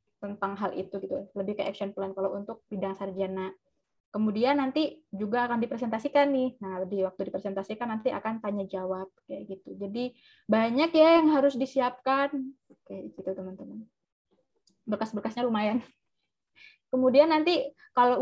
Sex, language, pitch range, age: female, Indonesian, 200-260 Hz, 20-39